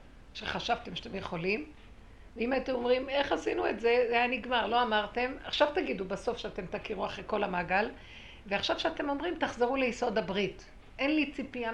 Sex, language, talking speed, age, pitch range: female, Hebrew, 165 wpm, 50-69, 195-245 Hz